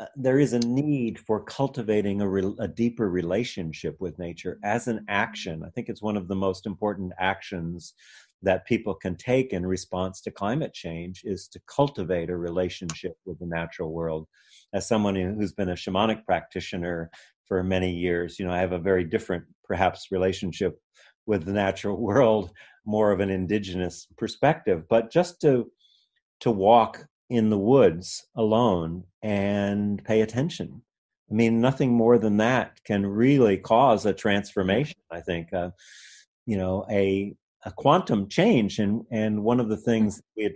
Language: English